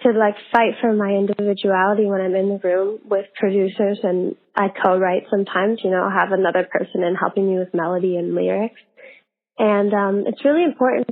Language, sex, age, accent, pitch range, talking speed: English, female, 20-39, American, 195-235 Hz, 195 wpm